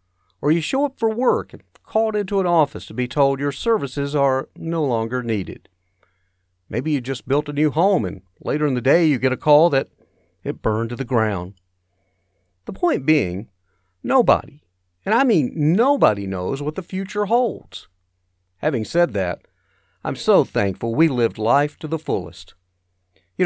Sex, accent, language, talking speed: male, American, English, 175 wpm